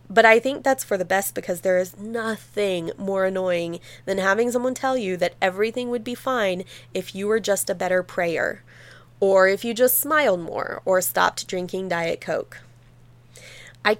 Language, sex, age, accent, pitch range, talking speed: English, female, 20-39, American, 185-245 Hz, 180 wpm